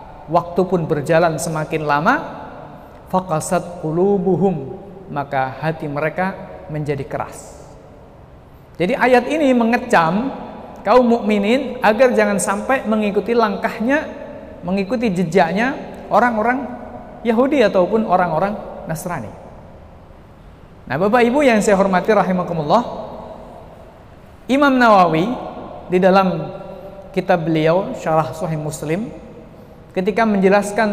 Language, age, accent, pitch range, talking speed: Indonesian, 50-69, native, 170-225 Hz, 95 wpm